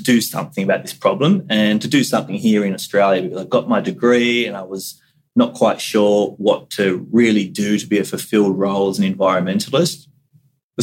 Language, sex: English, male